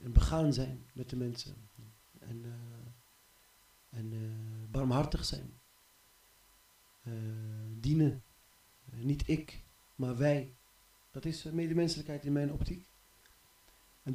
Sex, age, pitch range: male, 40-59, 120-155 Hz